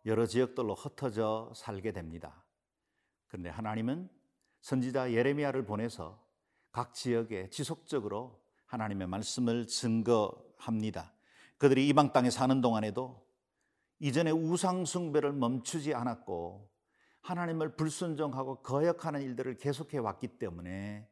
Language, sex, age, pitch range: Korean, male, 50-69, 110-145 Hz